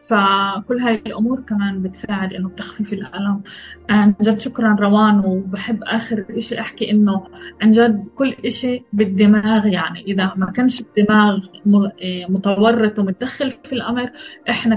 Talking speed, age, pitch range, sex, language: 130 wpm, 20-39, 205-235 Hz, female, Arabic